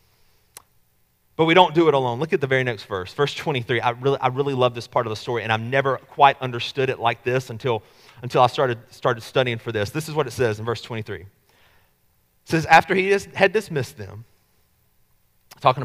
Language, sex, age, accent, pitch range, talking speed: English, male, 30-49, American, 115-165 Hz, 210 wpm